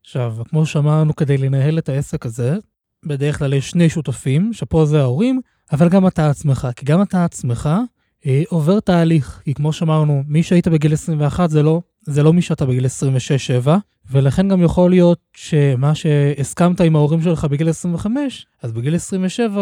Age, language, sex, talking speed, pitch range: 20-39, Hebrew, male, 170 wpm, 145-175 Hz